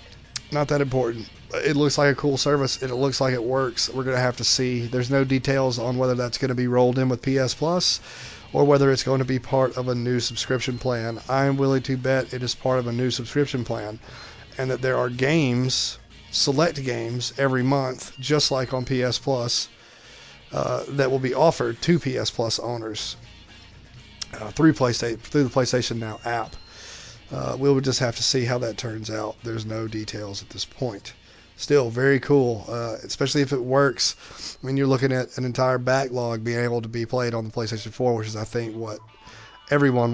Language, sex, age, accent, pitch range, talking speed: English, male, 30-49, American, 115-135 Hz, 205 wpm